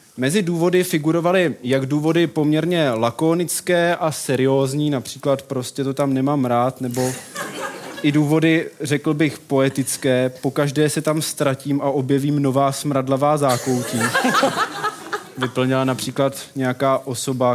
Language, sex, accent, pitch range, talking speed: Czech, male, native, 125-150 Hz, 115 wpm